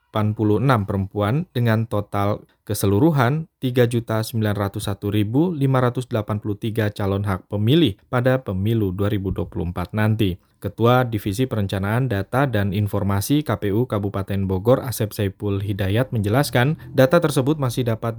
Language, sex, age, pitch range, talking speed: Indonesian, male, 20-39, 105-135 Hz, 100 wpm